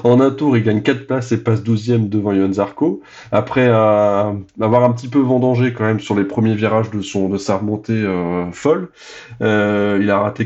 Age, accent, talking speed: 20-39, French, 210 wpm